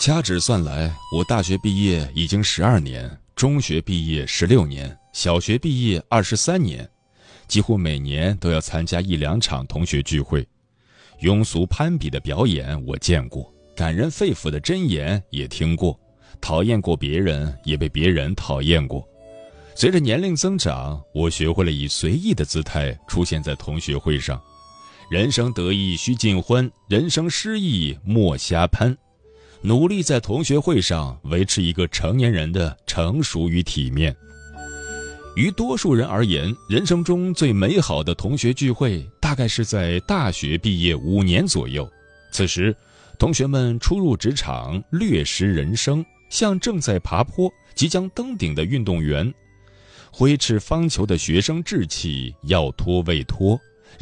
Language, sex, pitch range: Chinese, male, 80-125 Hz